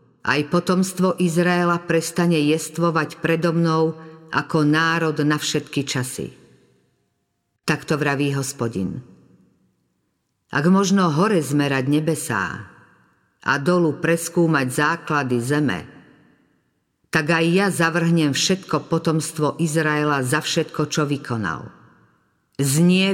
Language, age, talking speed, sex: Slovak, 50-69, 95 wpm, female